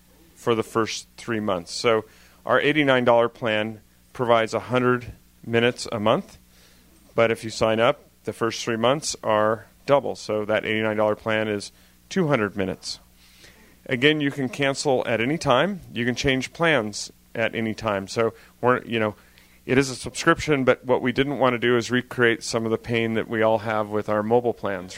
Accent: American